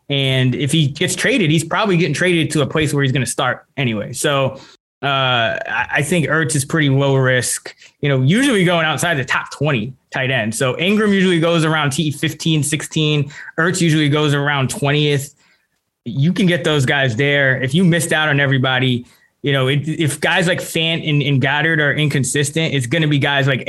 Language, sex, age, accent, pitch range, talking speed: English, male, 20-39, American, 135-170 Hz, 200 wpm